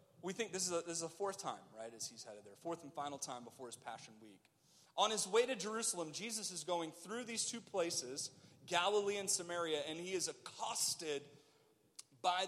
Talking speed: 195 wpm